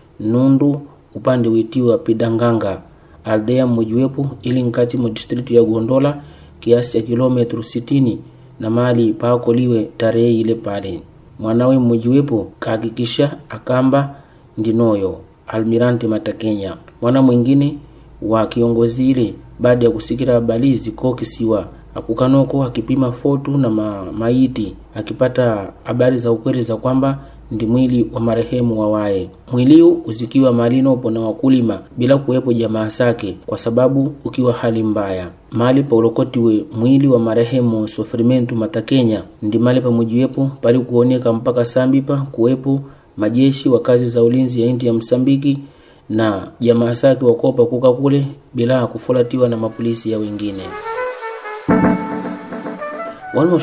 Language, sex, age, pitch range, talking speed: Portuguese, male, 30-49, 115-130 Hz, 120 wpm